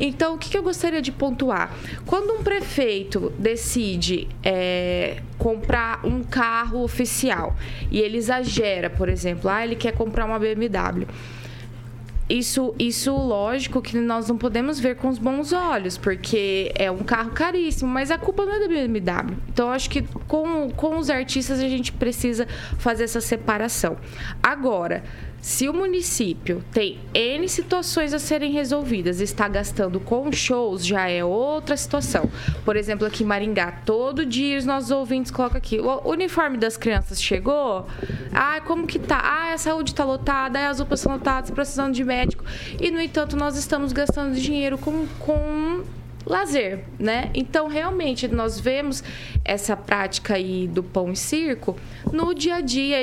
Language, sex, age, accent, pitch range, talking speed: Portuguese, female, 20-39, Brazilian, 220-295 Hz, 160 wpm